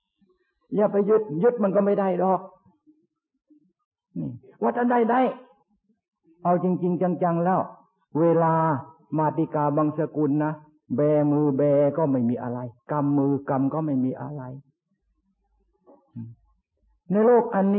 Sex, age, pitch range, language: male, 60-79, 155-215 Hz, Thai